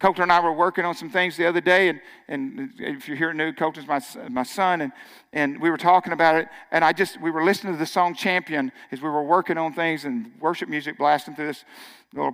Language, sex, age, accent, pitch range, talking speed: English, male, 50-69, American, 145-190 Hz, 250 wpm